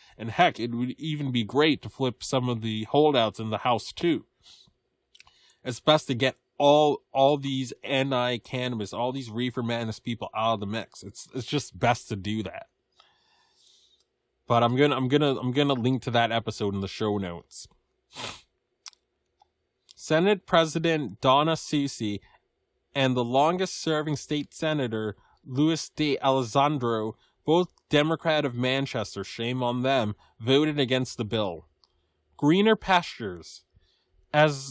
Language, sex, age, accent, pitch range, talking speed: English, male, 20-39, American, 115-150 Hz, 145 wpm